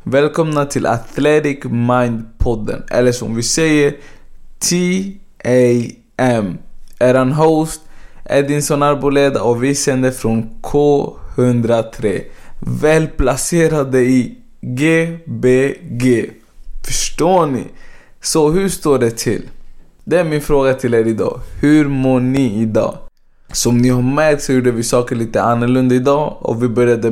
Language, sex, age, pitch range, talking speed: Swedish, male, 20-39, 115-145 Hz, 120 wpm